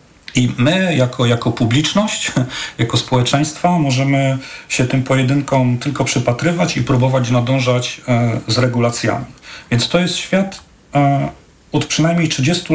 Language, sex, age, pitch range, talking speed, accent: Polish, male, 40-59, 125-145 Hz, 120 wpm, native